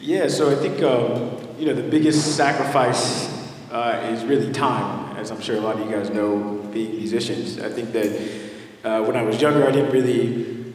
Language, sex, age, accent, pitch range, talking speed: English, male, 30-49, American, 110-120 Hz, 205 wpm